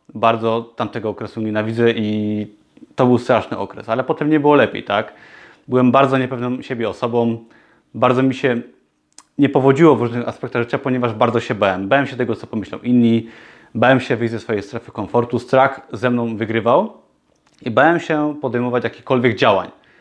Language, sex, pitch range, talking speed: Polish, male, 115-140 Hz, 170 wpm